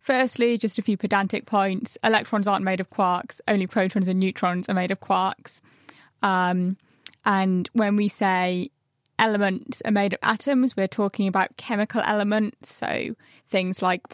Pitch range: 195-230 Hz